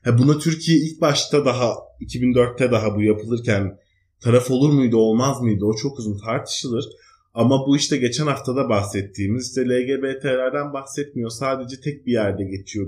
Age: 30-49